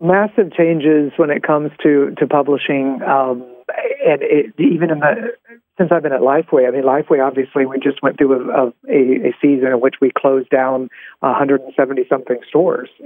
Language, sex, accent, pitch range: English, male, American, 135-165 Hz